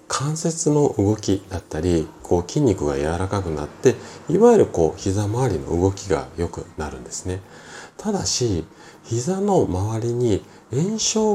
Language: Japanese